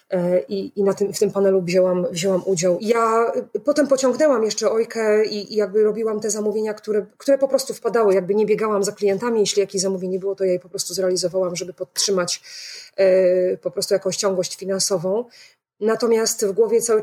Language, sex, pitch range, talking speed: Polish, female, 195-220 Hz, 175 wpm